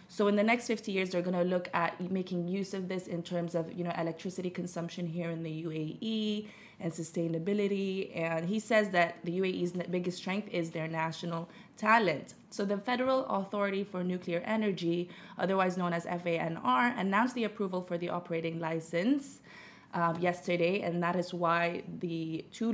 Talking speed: 175 wpm